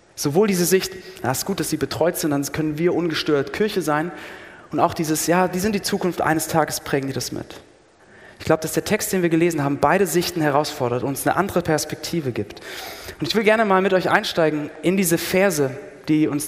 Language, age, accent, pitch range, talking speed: German, 30-49, German, 155-195 Hz, 220 wpm